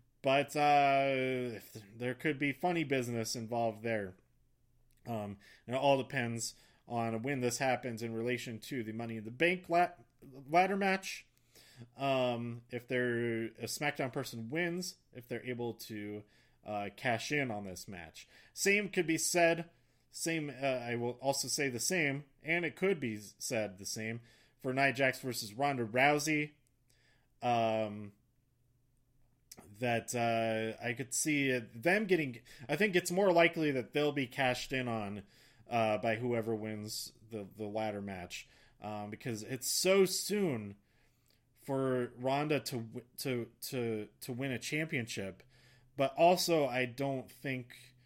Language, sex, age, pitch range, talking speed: English, male, 30-49, 115-140 Hz, 145 wpm